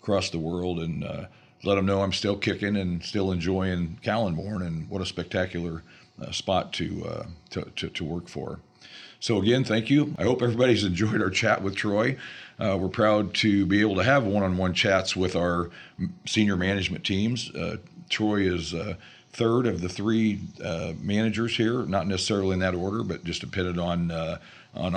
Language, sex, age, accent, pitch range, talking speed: English, male, 50-69, American, 95-115 Hz, 180 wpm